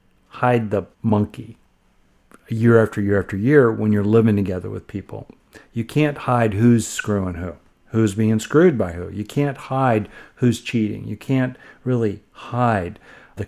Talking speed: 155 wpm